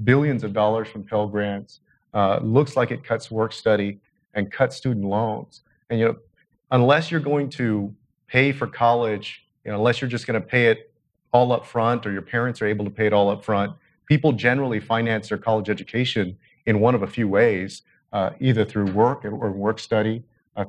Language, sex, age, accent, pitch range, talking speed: English, male, 40-59, American, 105-125 Hz, 195 wpm